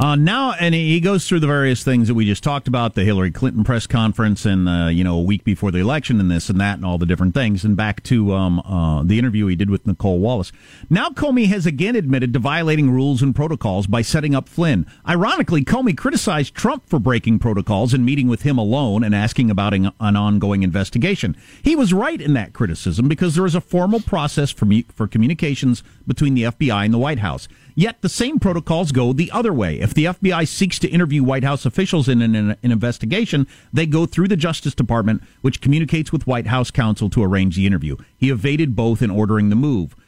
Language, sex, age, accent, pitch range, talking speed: English, male, 50-69, American, 115-165 Hz, 225 wpm